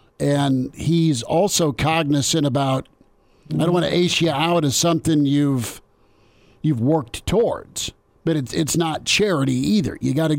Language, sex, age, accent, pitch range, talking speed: English, male, 50-69, American, 130-155 Hz, 155 wpm